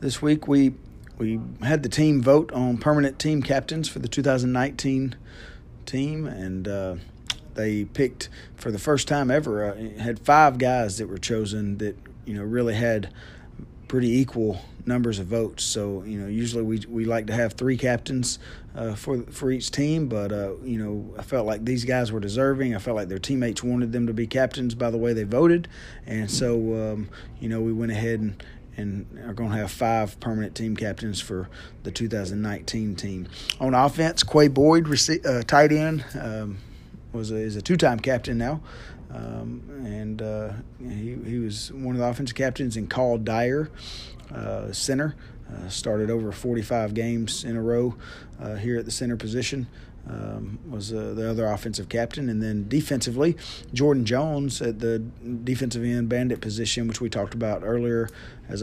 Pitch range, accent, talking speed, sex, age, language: 110-125 Hz, American, 180 wpm, male, 40-59, English